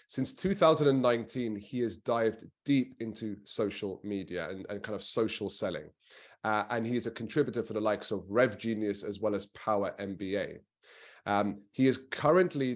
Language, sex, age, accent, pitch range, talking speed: English, male, 30-49, British, 105-125 Hz, 170 wpm